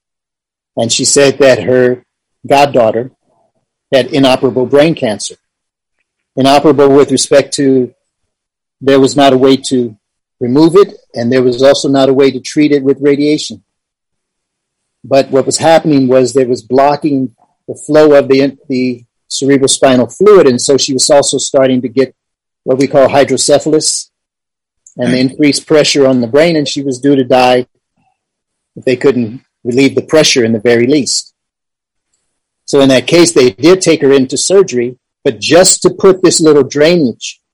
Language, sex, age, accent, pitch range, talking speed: English, male, 40-59, American, 125-145 Hz, 160 wpm